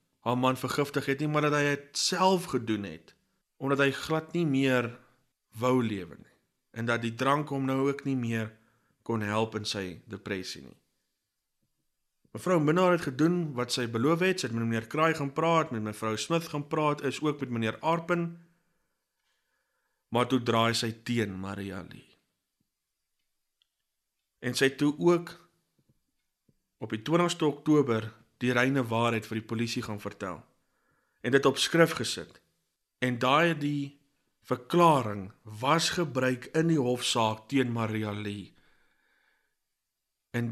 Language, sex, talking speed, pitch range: English, male, 150 wpm, 115-145 Hz